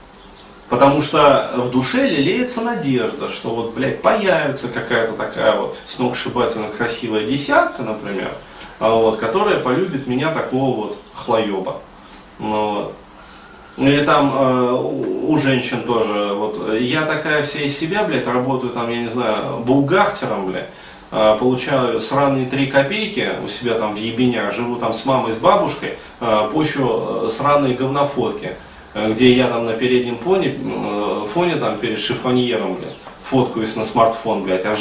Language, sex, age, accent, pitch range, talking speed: Russian, male, 20-39, native, 110-140 Hz, 140 wpm